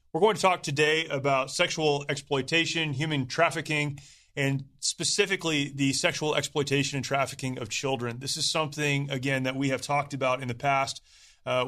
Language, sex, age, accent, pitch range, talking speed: English, male, 30-49, American, 125-150 Hz, 165 wpm